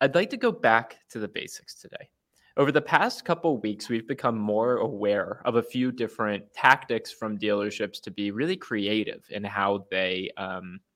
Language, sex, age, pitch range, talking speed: English, male, 20-39, 105-120 Hz, 185 wpm